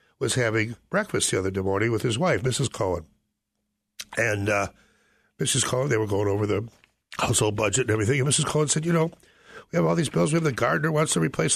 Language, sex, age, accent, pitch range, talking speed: English, male, 60-79, American, 110-165 Hz, 225 wpm